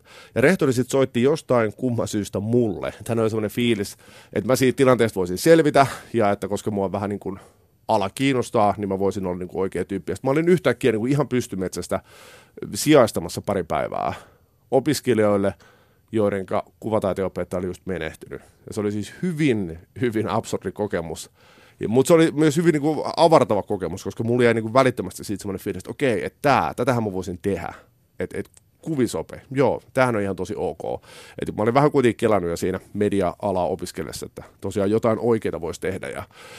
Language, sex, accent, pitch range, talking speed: Finnish, male, native, 95-120 Hz, 185 wpm